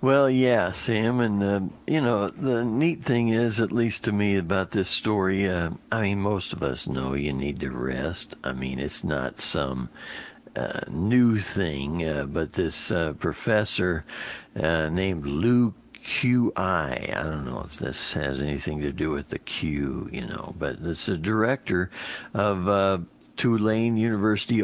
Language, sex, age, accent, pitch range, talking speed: English, male, 60-79, American, 75-110 Hz, 165 wpm